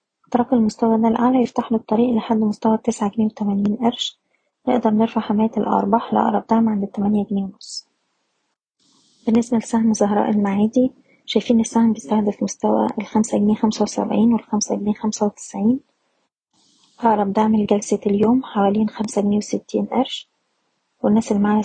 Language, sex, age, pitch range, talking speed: Arabic, female, 20-39, 210-230 Hz, 140 wpm